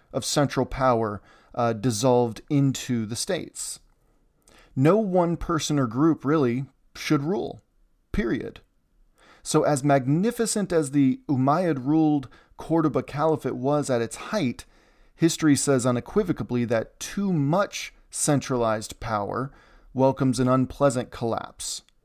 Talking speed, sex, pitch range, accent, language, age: 110 wpm, male, 120-155 Hz, American, English, 30-49